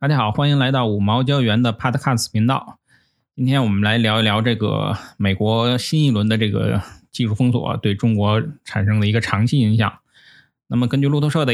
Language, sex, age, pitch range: Chinese, male, 20-39, 105-125 Hz